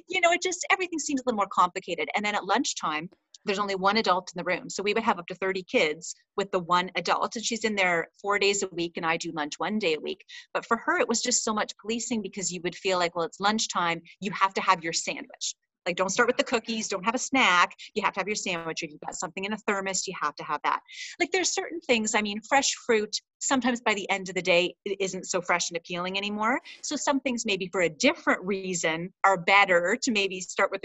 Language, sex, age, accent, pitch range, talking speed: English, female, 30-49, American, 180-240 Hz, 265 wpm